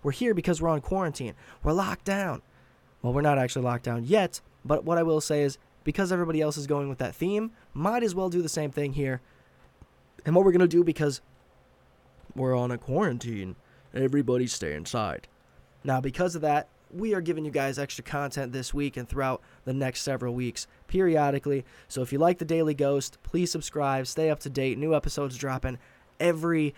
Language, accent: English, American